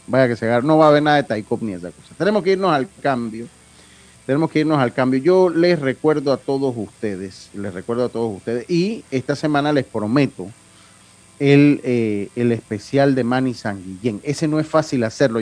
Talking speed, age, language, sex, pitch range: 200 wpm, 40-59, Spanish, male, 115-155 Hz